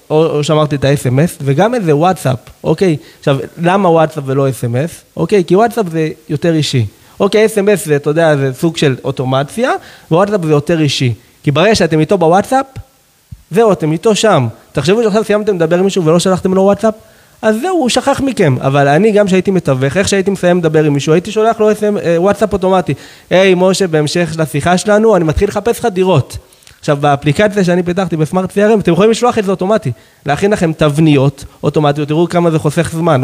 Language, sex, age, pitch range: Hebrew, male, 30-49, 150-200 Hz